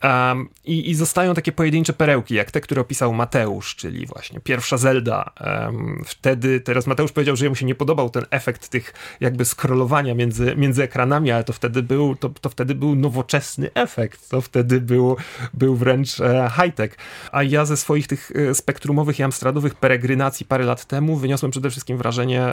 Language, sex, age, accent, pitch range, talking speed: Polish, male, 30-49, native, 125-150 Hz, 180 wpm